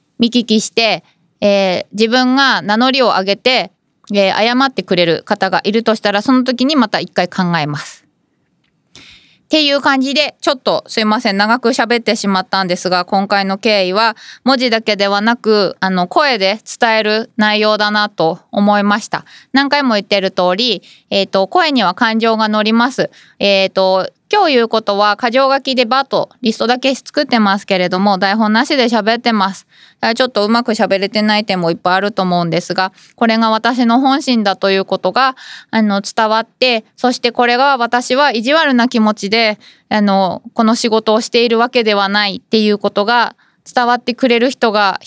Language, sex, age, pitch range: Japanese, female, 20-39, 200-245 Hz